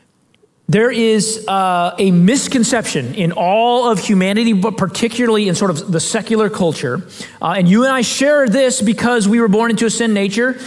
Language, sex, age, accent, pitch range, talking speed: English, male, 30-49, American, 210-280 Hz, 180 wpm